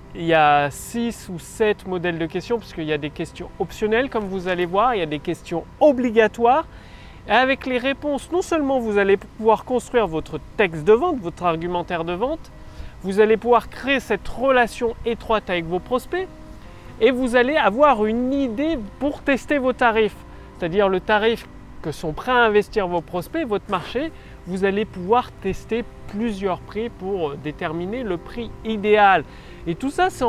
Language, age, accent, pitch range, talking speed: French, 30-49, French, 180-245 Hz, 180 wpm